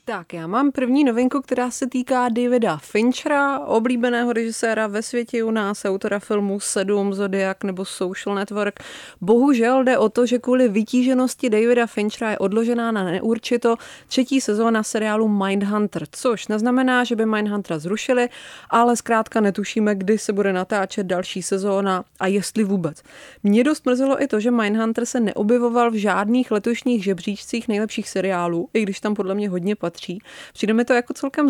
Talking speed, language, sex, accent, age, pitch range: 160 wpm, English, female, Czech, 20-39, 195-240 Hz